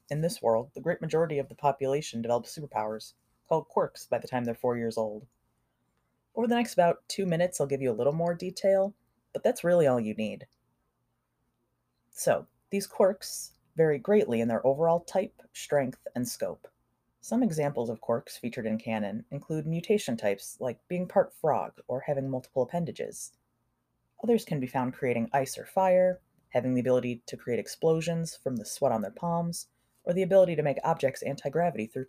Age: 30-49